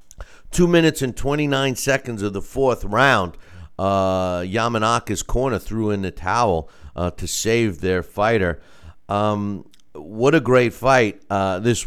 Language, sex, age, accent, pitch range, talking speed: English, male, 50-69, American, 95-135 Hz, 140 wpm